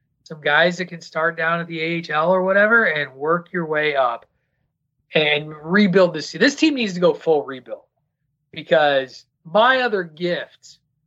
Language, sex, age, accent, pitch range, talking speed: English, male, 30-49, American, 135-175 Hz, 165 wpm